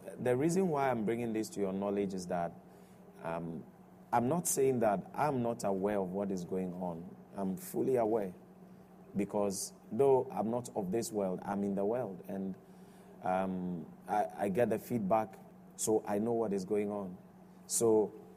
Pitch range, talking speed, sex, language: 100-150 Hz, 175 wpm, male, English